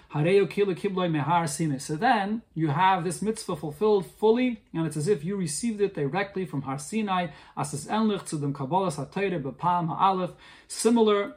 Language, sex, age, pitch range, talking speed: English, male, 30-49, 155-210 Hz, 105 wpm